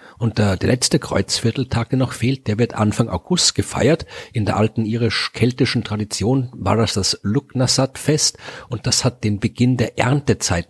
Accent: German